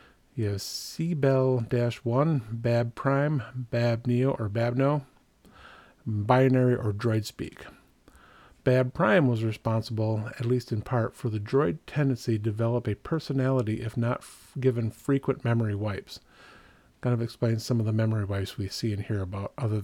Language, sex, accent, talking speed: English, male, American, 140 wpm